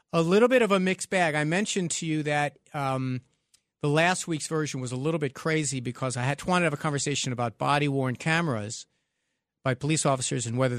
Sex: male